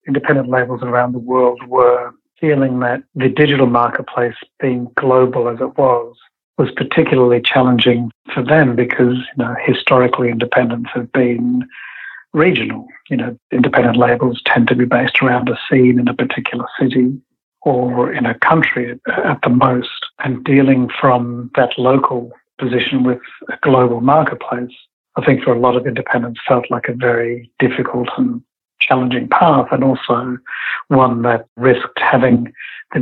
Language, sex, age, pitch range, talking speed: English, male, 60-79, 125-130 Hz, 150 wpm